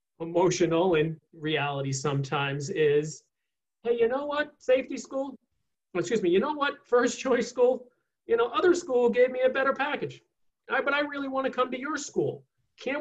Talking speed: 180 wpm